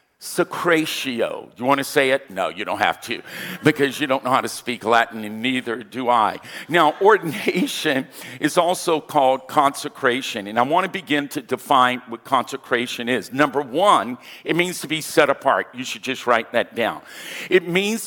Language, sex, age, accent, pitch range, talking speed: English, male, 50-69, American, 135-180 Hz, 185 wpm